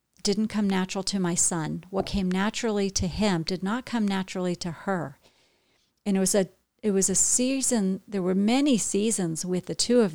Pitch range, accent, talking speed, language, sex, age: 175-210 Hz, American, 195 wpm, English, female, 50-69